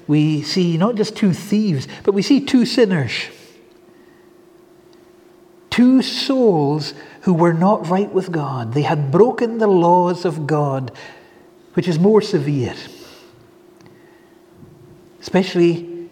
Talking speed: 115 wpm